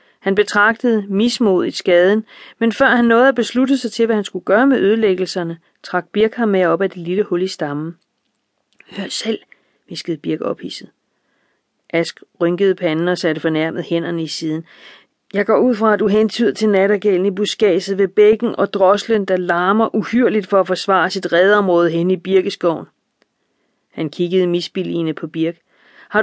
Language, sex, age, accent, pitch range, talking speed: Danish, female, 40-59, native, 180-230 Hz, 170 wpm